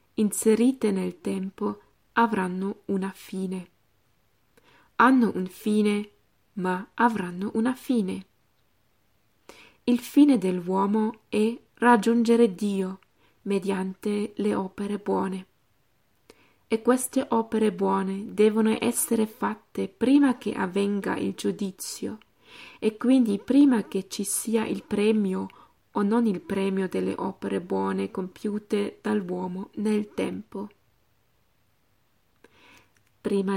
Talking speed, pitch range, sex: 100 wpm, 190-225 Hz, female